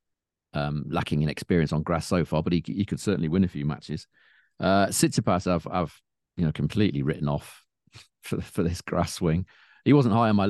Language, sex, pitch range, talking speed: English, male, 80-110 Hz, 205 wpm